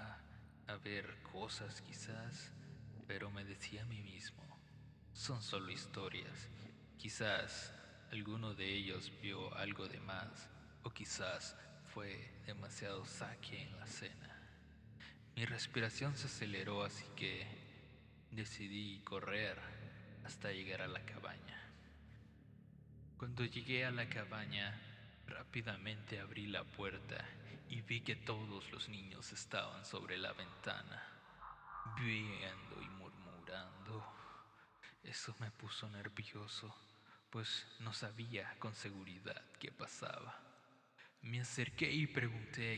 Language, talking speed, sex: Spanish, 110 wpm, male